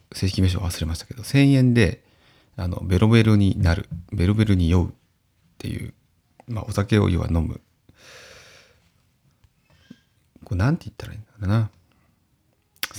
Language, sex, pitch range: Japanese, male, 90-115 Hz